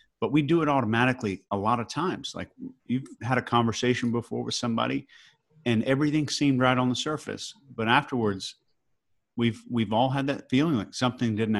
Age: 40-59